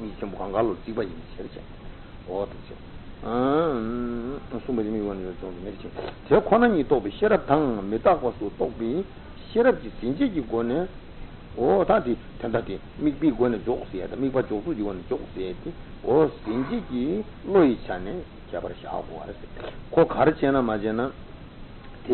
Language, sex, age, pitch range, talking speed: Italian, male, 60-79, 115-160 Hz, 85 wpm